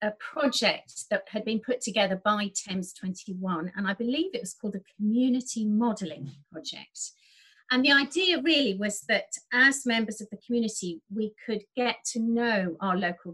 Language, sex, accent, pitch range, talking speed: English, female, British, 195-240 Hz, 170 wpm